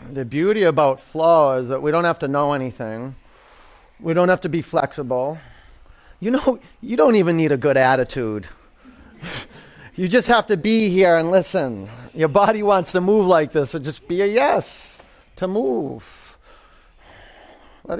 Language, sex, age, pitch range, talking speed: English, male, 30-49, 120-190 Hz, 165 wpm